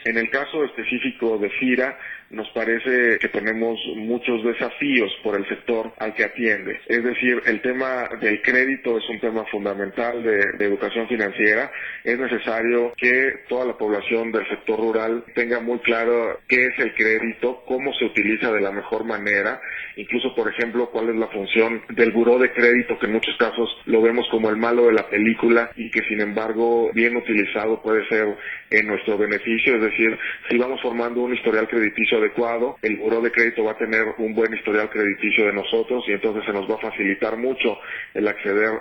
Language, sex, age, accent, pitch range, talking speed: Spanish, male, 40-59, Mexican, 110-120 Hz, 190 wpm